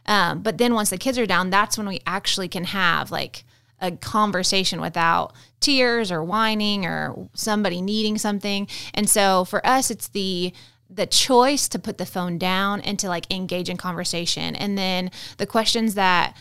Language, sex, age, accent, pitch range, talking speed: English, female, 20-39, American, 180-215 Hz, 180 wpm